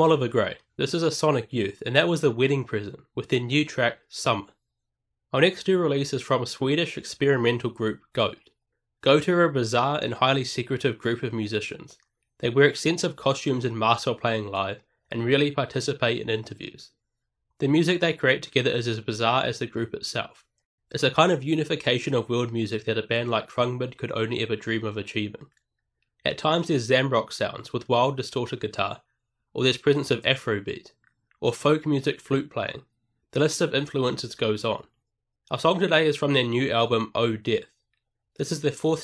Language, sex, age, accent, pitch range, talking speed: English, male, 20-39, Australian, 115-145 Hz, 190 wpm